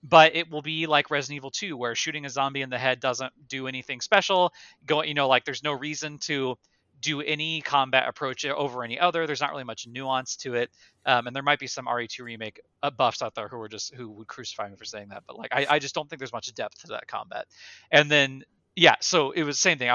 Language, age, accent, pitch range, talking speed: English, 30-49, American, 120-150 Hz, 255 wpm